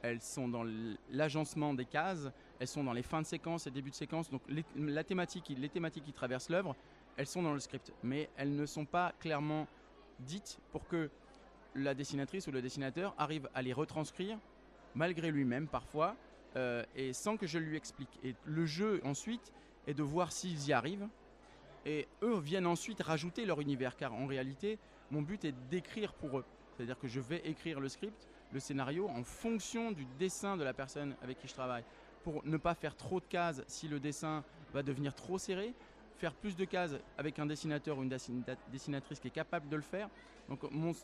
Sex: male